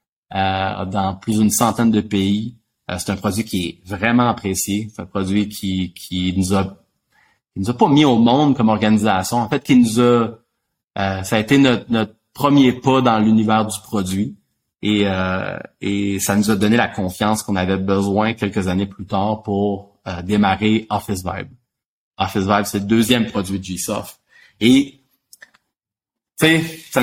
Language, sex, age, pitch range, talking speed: French, male, 30-49, 100-120 Hz, 175 wpm